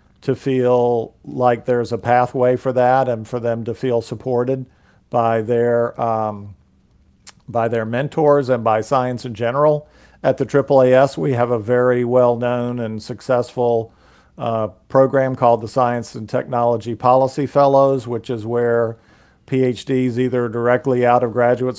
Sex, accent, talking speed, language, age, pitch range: male, American, 145 wpm, English, 50-69, 115-130 Hz